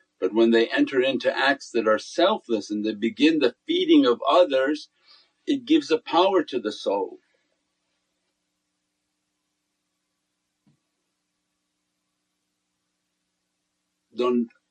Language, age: English, 50-69